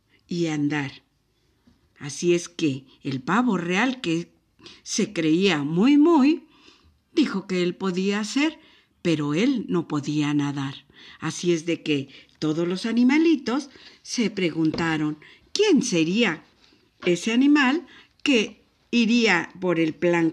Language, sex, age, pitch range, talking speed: Spanish, female, 50-69, 150-230 Hz, 120 wpm